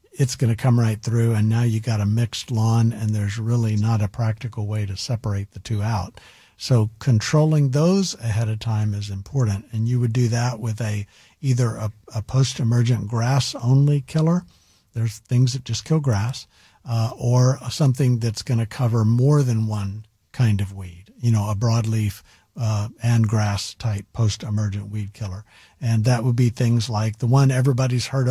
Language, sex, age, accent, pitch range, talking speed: English, male, 50-69, American, 105-125 Hz, 180 wpm